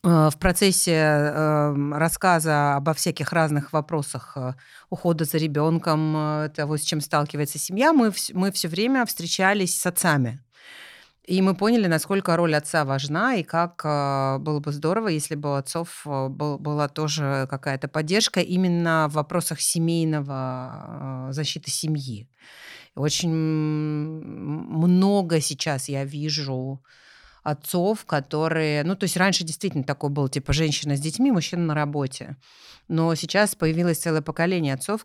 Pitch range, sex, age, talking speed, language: 145-170 Hz, female, 30-49, 125 wpm, Russian